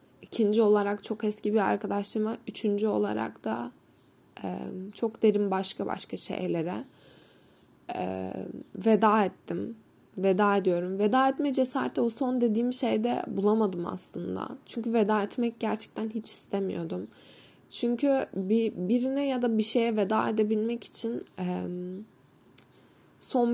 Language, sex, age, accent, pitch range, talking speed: Turkish, female, 10-29, native, 185-225 Hz, 110 wpm